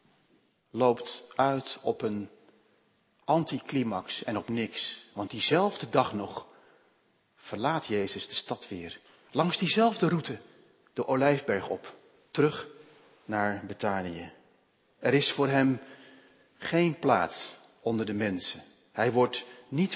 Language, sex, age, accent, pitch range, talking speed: Dutch, male, 40-59, Dutch, 125-185 Hz, 115 wpm